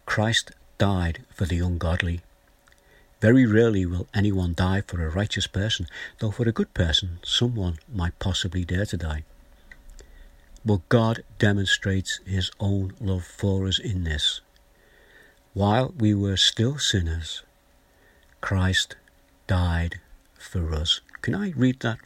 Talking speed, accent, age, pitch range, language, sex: 130 wpm, British, 60-79, 85-100 Hz, English, male